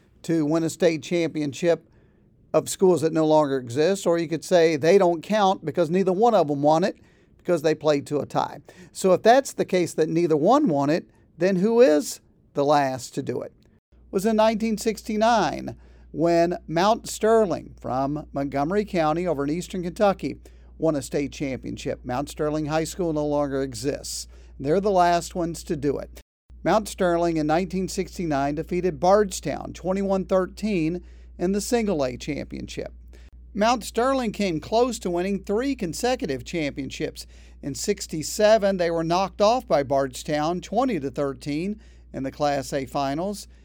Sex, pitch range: male, 145-200 Hz